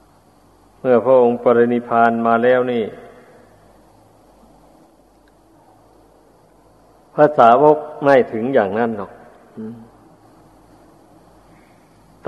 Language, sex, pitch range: Thai, male, 110-120 Hz